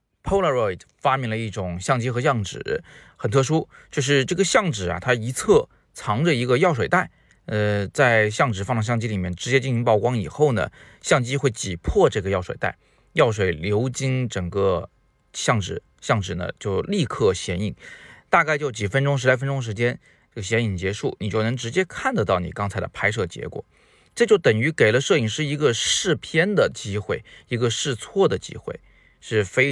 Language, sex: Chinese, male